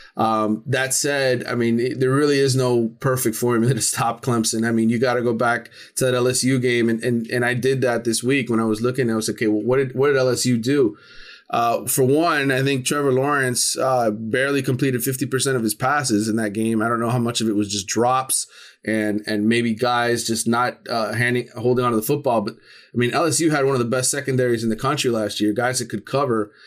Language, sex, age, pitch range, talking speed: English, male, 30-49, 115-130 Hz, 245 wpm